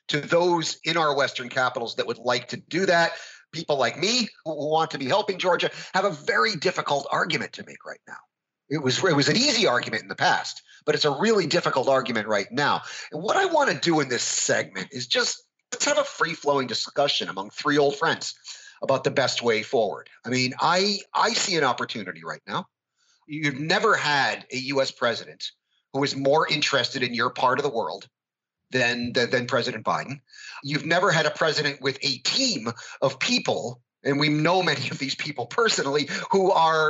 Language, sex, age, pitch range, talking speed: English, male, 30-49, 135-185 Hz, 200 wpm